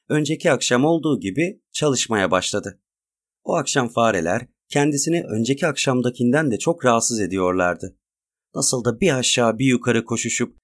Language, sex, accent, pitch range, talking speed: Turkish, male, native, 110-145 Hz, 130 wpm